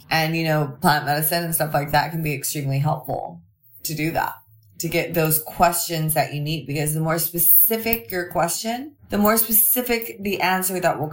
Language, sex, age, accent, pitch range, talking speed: English, female, 20-39, American, 150-205 Hz, 195 wpm